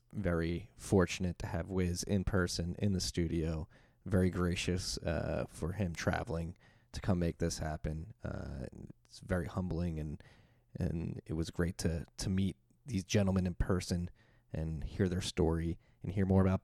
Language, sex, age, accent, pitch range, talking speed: English, male, 20-39, American, 85-105 Hz, 160 wpm